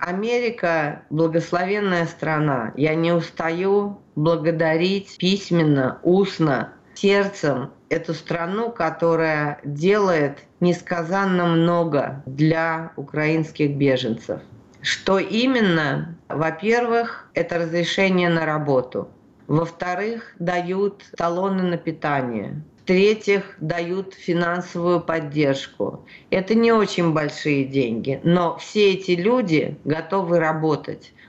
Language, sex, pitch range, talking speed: Russian, female, 160-190 Hz, 90 wpm